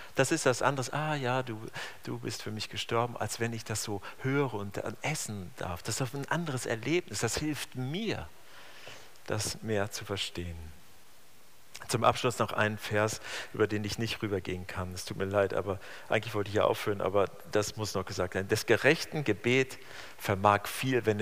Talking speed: 185 wpm